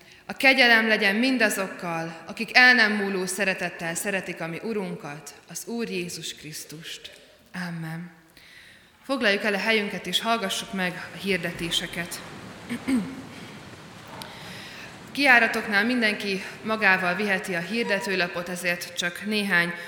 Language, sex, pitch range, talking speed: Hungarian, female, 170-215 Hz, 110 wpm